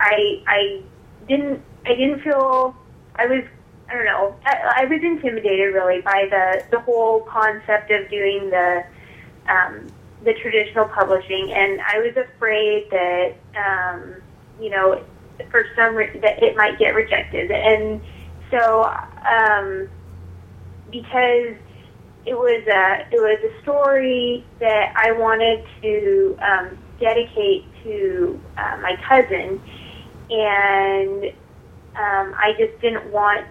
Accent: American